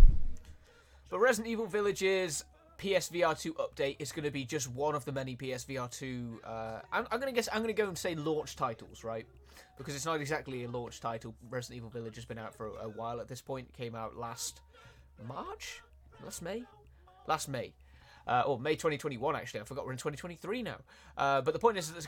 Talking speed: 210 wpm